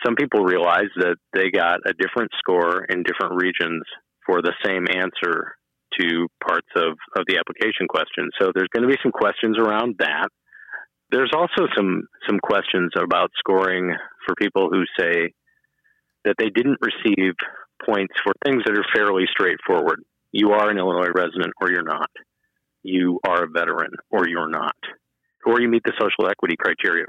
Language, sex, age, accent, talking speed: English, male, 40-59, American, 170 wpm